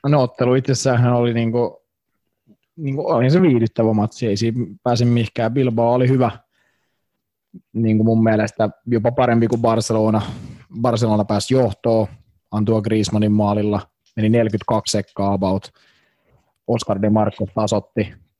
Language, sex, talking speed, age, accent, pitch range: Finnish, male, 125 wpm, 20-39, native, 105-120 Hz